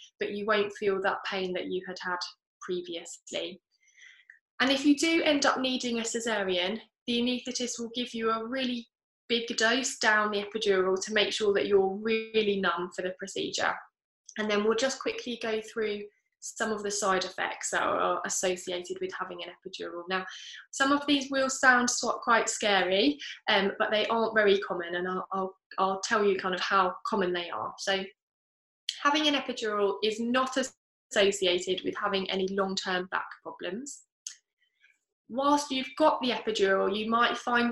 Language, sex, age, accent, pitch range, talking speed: English, female, 10-29, British, 195-255 Hz, 170 wpm